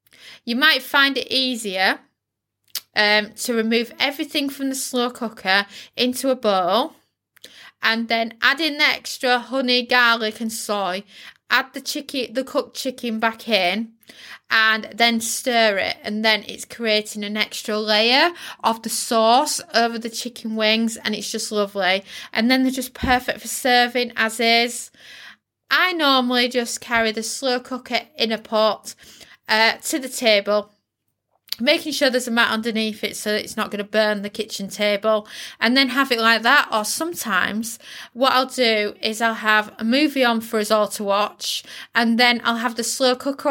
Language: English